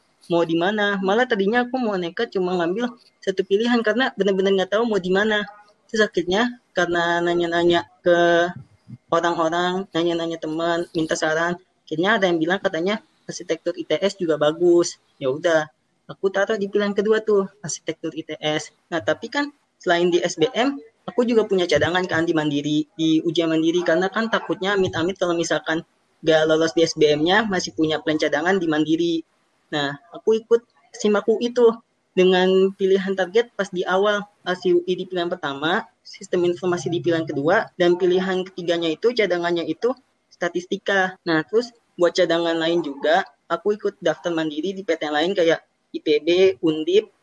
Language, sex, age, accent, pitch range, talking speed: Indonesian, female, 20-39, native, 165-205 Hz, 155 wpm